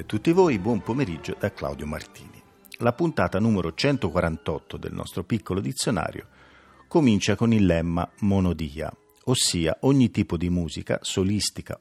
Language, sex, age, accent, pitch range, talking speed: Italian, male, 50-69, native, 90-125 Hz, 130 wpm